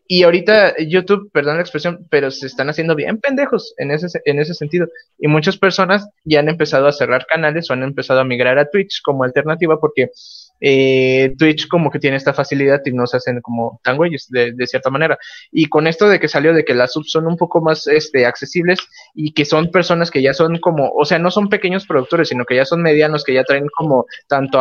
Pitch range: 135-175 Hz